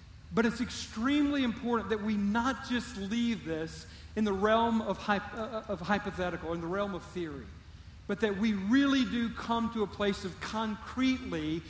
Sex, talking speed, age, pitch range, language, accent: male, 170 wpm, 50-69, 175-225 Hz, English, American